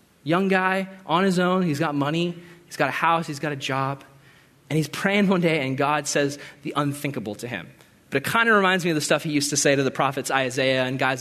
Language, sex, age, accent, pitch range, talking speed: English, male, 20-39, American, 145-210 Hz, 250 wpm